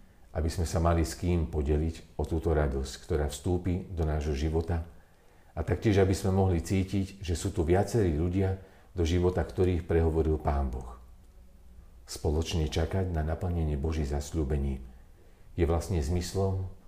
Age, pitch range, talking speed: 50-69, 75-90 Hz, 145 wpm